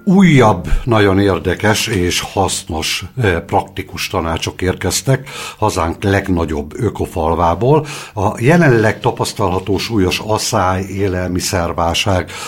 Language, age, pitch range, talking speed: Hungarian, 60-79, 85-110 Hz, 85 wpm